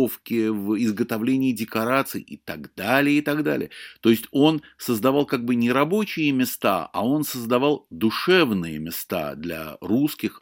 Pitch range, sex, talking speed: 100-145 Hz, male, 145 wpm